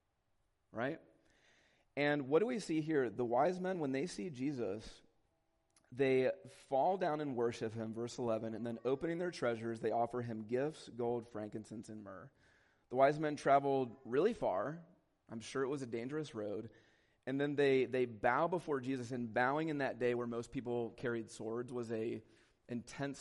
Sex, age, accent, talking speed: male, 30-49, American, 175 wpm